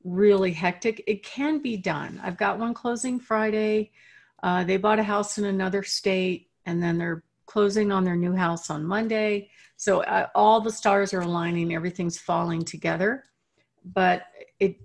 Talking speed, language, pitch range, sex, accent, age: 165 wpm, English, 175-220 Hz, female, American, 50-69